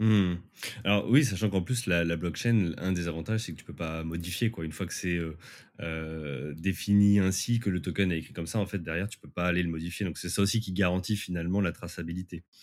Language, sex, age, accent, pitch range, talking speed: French, male, 20-39, French, 85-110 Hz, 255 wpm